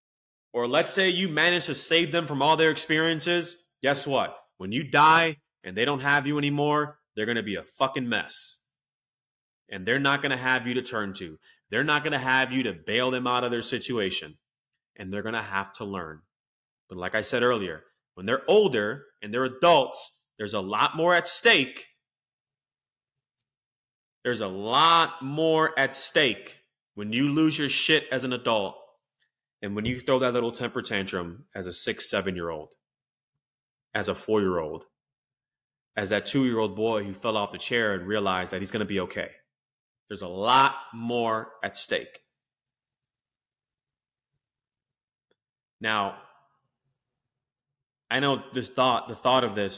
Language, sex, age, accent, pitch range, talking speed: English, male, 30-49, American, 110-140 Hz, 165 wpm